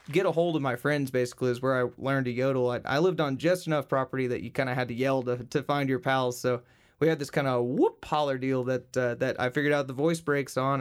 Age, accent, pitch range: 20-39, American, 125-150 Hz